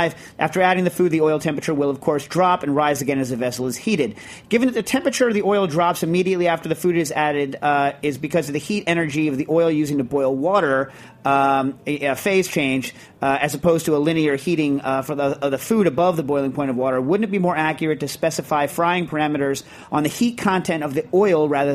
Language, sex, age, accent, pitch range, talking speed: English, male, 40-59, American, 135-165 Hz, 240 wpm